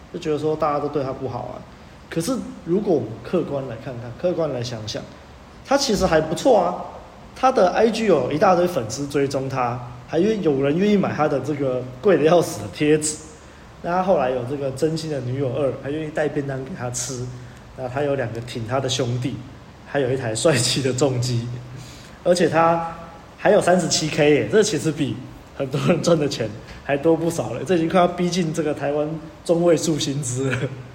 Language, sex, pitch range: Chinese, male, 130-180 Hz